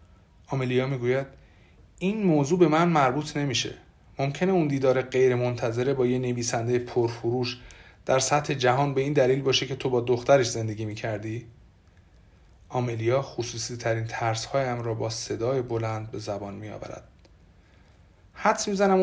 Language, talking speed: Persian, 135 wpm